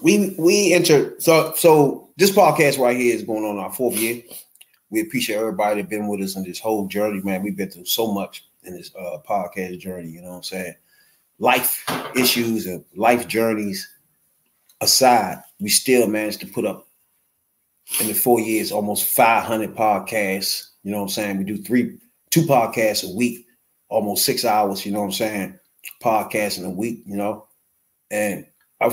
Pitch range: 100-125 Hz